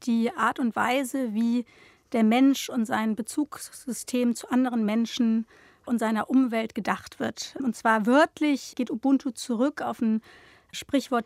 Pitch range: 225-270 Hz